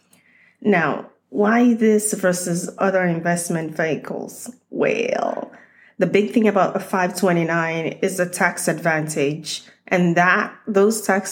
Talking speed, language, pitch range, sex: 115 wpm, English, 170-210 Hz, female